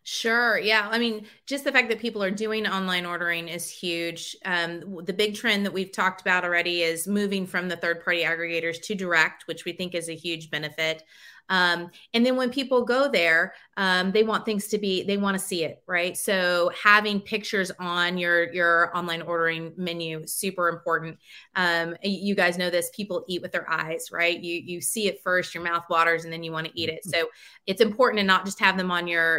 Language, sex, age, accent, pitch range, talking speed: English, female, 30-49, American, 170-205 Hz, 215 wpm